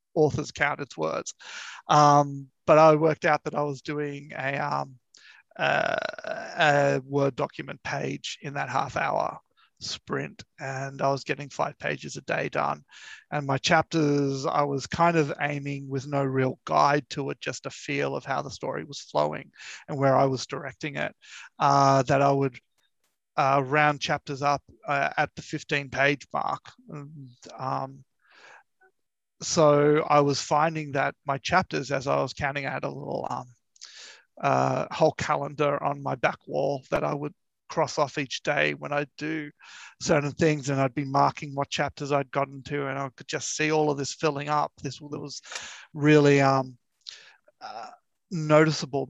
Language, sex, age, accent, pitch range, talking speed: English, male, 30-49, Australian, 135-150 Hz, 170 wpm